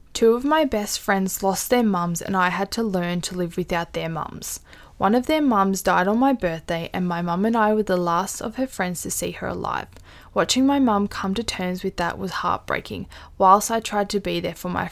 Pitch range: 180-220 Hz